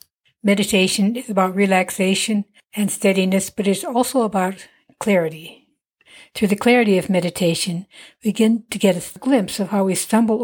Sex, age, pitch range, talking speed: female, 60-79, 180-215 Hz, 150 wpm